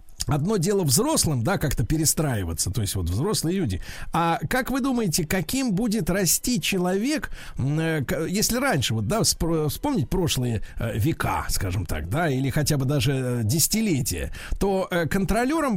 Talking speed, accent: 135 wpm, native